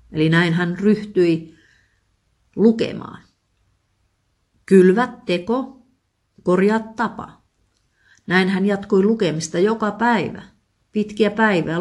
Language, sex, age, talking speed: Finnish, female, 50-69, 85 wpm